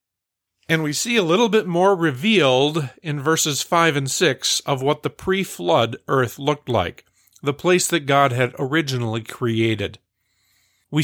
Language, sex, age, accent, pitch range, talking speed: English, male, 50-69, American, 115-155 Hz, 160 wpm